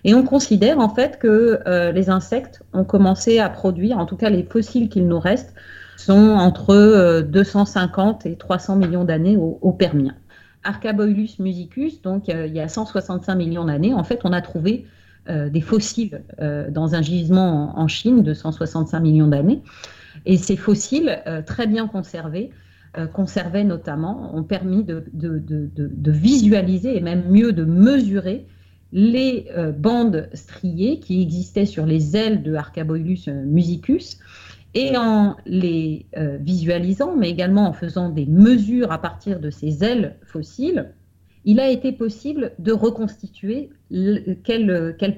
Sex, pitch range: female, 170-220 Hz